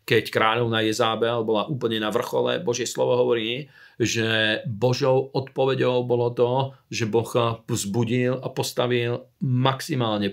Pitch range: 105-125 Hz